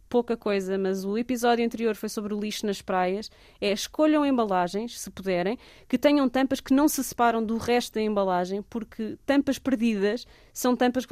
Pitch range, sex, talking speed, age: 195-235 Hz, female, 185 wpm, 20-39